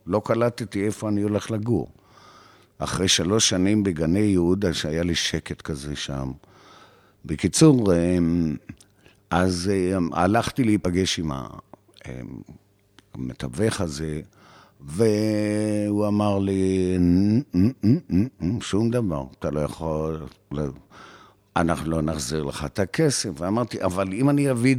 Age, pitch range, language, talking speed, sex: 60-79, 85-105 Hz, Hebrew, 100 wpm, male